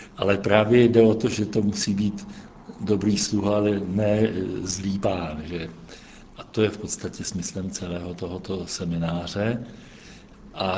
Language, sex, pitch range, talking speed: Czech, male, 90-105 Hz, 145 wpm